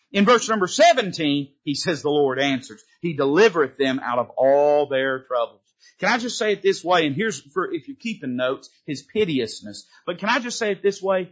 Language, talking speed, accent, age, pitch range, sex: English, 225 wpm, American, 40-59, 140-205 Hz, male